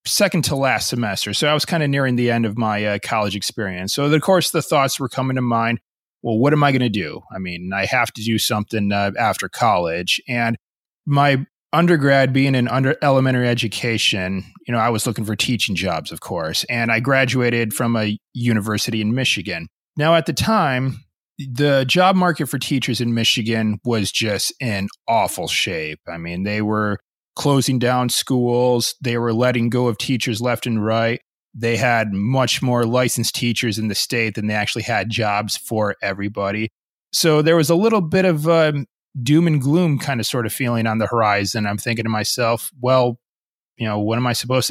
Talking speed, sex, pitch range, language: 195 wpm, male, 110-130 Hz, English